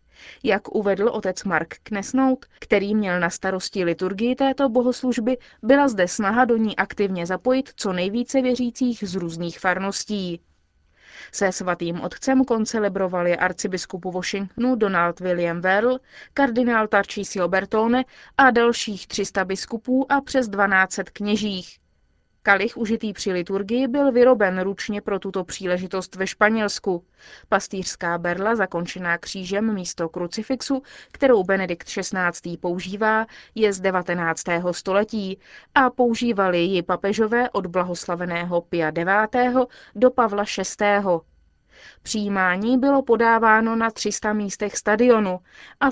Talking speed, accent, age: 120 wpm, native, 20-39